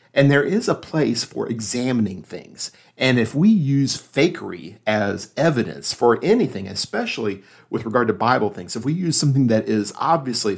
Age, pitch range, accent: 50-69, 110-135 Hz, American